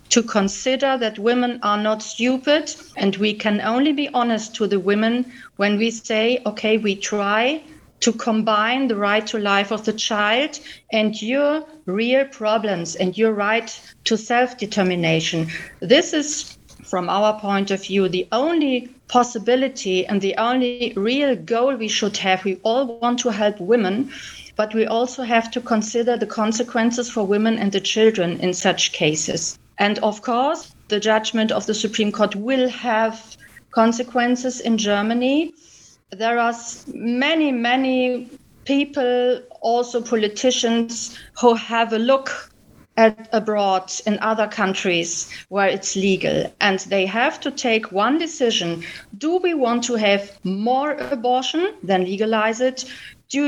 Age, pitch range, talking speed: 40-59, 205-250 Hz, 145 wpm